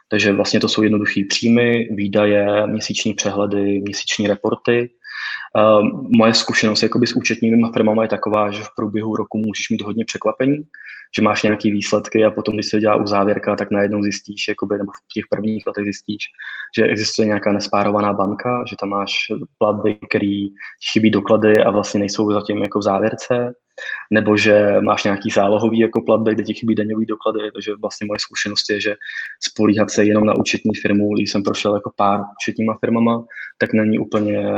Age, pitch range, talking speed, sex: 20-39, 100-110 Hz, 175 wpm, male